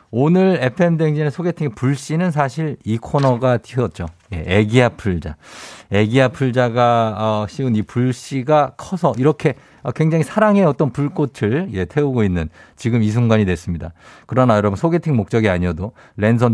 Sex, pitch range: male, 100-150 Hz